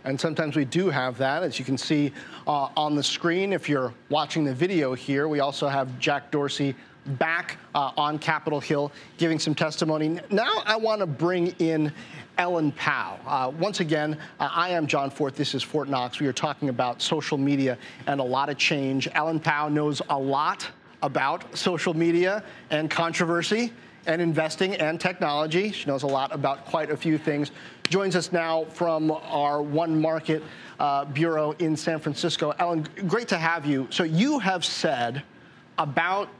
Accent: American